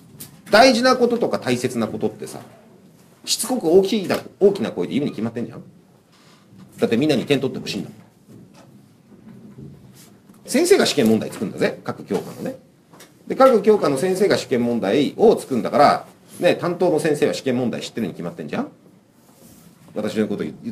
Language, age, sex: Japanese, 40-59, male